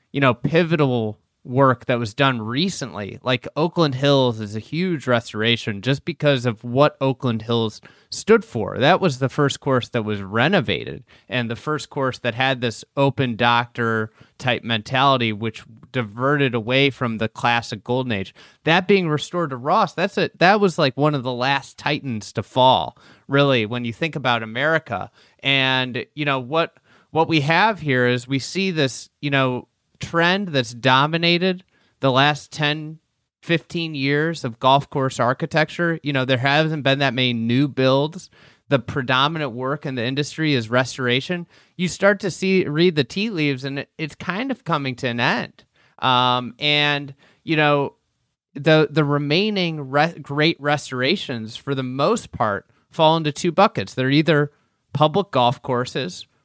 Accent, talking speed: American, 165 wpm